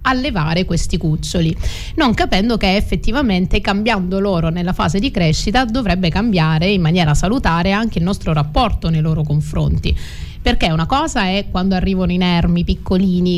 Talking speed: 150 wpm